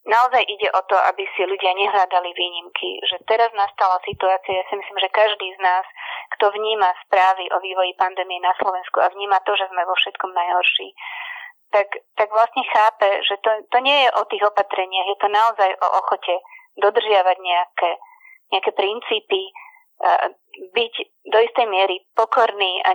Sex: female